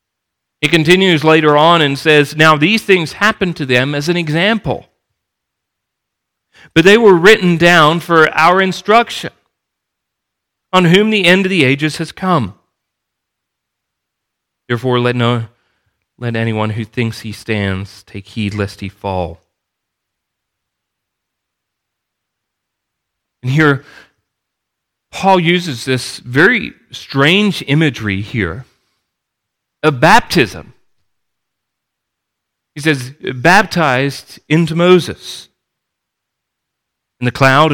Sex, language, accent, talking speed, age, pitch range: male, English, American, 105 wpm, 40-59, 110-160 Hz